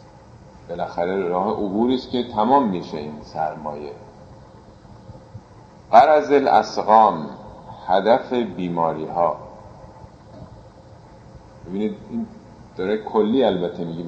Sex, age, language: male, 50-69, Persian